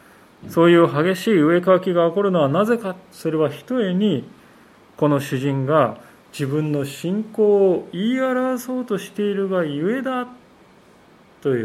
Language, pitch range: Japanese, 145-200 Hz